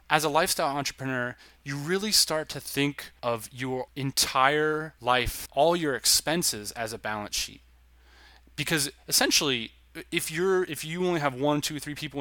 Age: 20-39